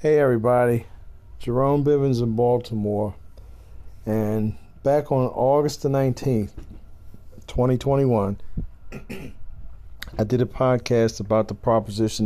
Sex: male